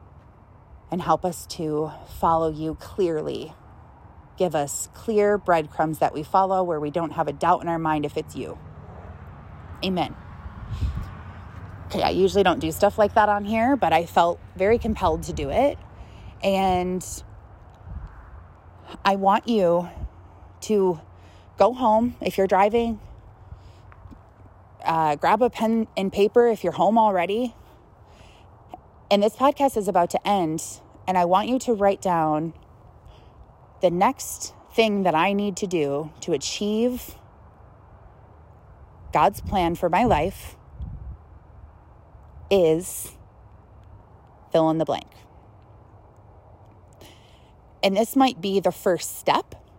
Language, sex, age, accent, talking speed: English, female, 30-49, American, 130 wpm